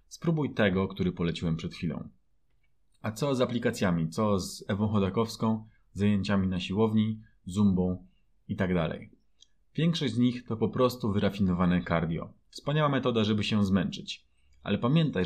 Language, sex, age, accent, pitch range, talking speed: Polish, male, 30-49, native, 100-130 Hz, 135 wpm